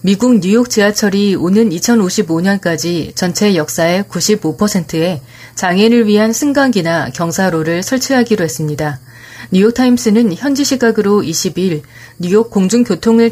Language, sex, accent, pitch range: Korean, female, native, 170-230 Hz